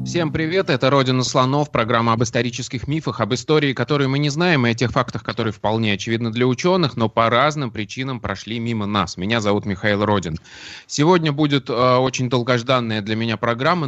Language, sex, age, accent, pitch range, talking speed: Russian, male, 20-39, native, 115-145 Hz, 185 wpm